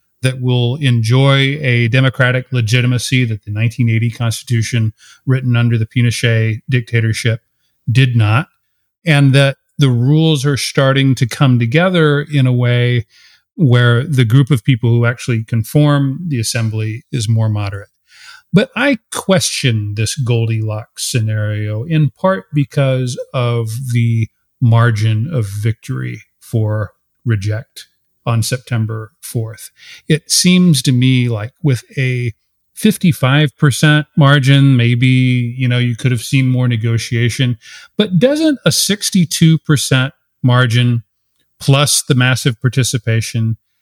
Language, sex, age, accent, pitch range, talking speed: English, male, 40-59, American, 115-135 Hz, 120 wpm